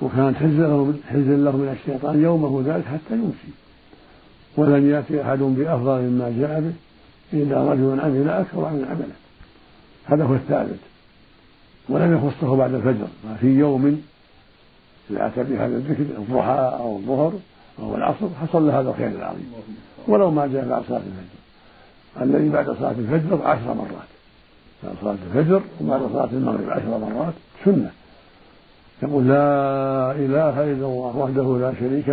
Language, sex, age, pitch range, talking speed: Arabic, male, 60-79, 125-150 Hz, 140 wpm